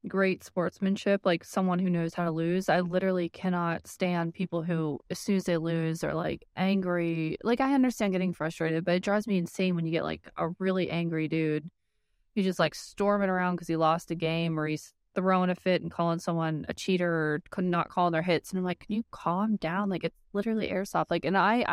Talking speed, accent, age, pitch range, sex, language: 225 wpm, American, 20-39, 165-190 Hz, female, English